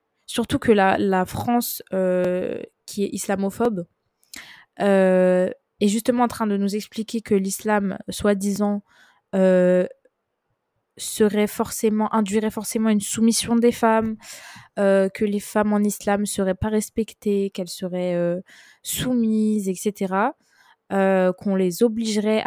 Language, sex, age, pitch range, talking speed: French, female, 20-39, 190-225 Hz, 125 wpm